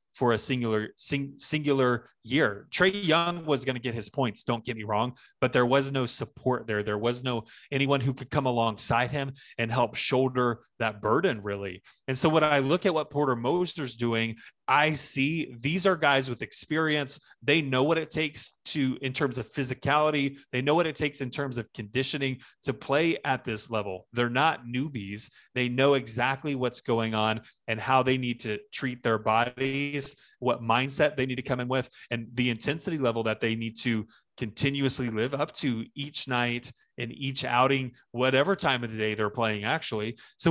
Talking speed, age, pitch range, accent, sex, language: 190 wpm, 30-49, 120-145 Hz, American, male, English